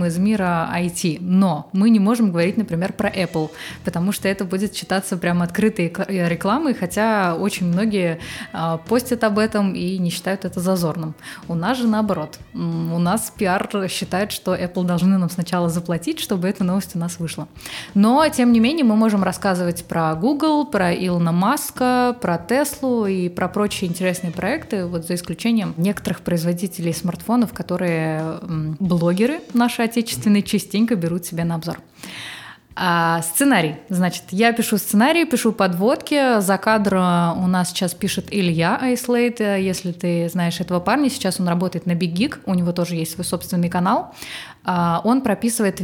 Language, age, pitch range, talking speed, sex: Russian, 20-39, 175-215 Hz, 155 wpm, female